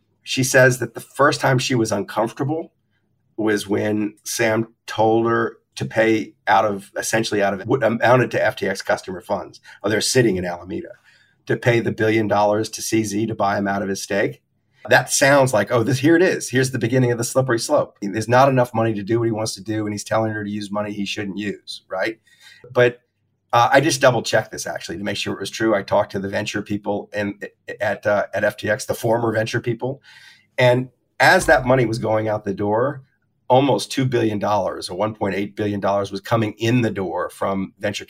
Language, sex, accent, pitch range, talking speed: English, male, American, 105-120 Hz, 210 wpm